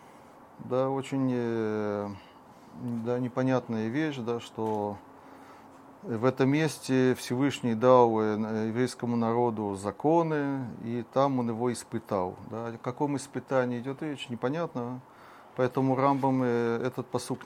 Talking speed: 105 wpm